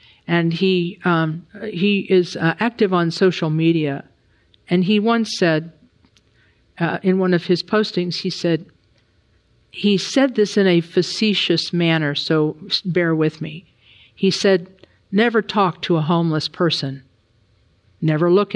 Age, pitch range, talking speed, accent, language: 50-69, 150-185 Hz, 140 wpm, American, English